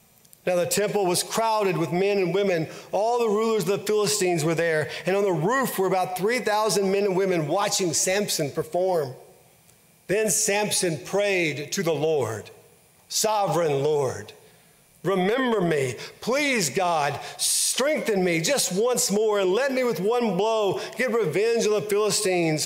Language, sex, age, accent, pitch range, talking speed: English, male, 50-69, American, 170-210 Hz, 155 wpm